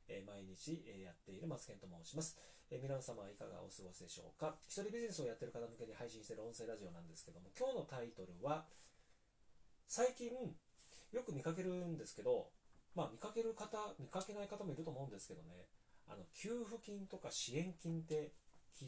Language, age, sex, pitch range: Japanese, 30-49, male, 125-180 Hz